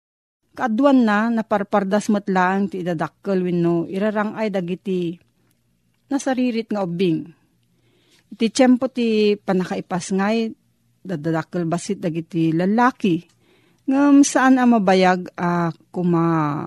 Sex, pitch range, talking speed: female, 165-215 Hz, 95 wpm